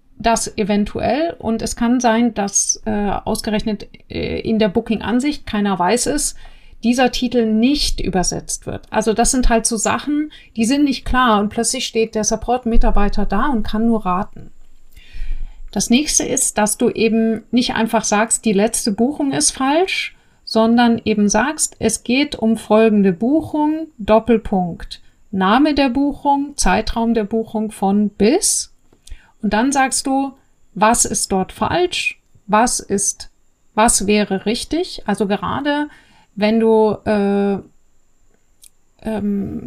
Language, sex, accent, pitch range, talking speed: German, female, German, 210-245 Hz, 140 wpm